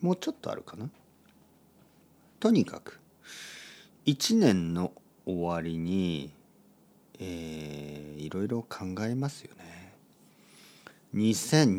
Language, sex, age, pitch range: Japanese, male, 50-69, 90-140 Hz